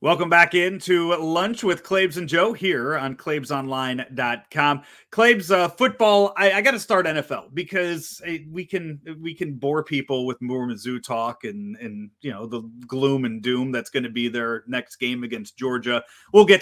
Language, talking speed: English, 190 wpm